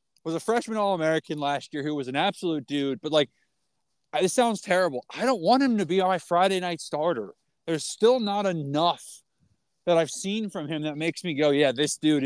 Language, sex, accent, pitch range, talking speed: English, male, American, 155-195 Hz, 215 wpm